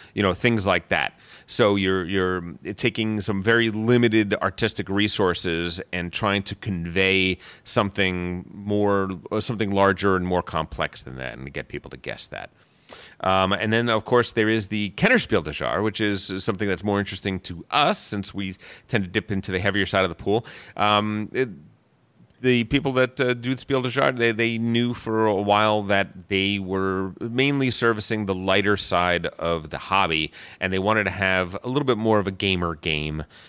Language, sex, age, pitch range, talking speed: English, male, 30-49, 90-110 Hz, 185 wpm